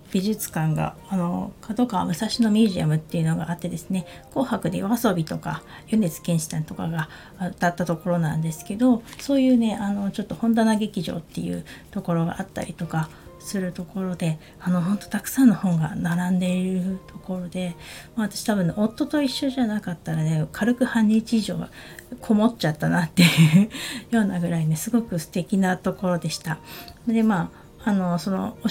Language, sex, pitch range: Japanese, female, 175-235 Hz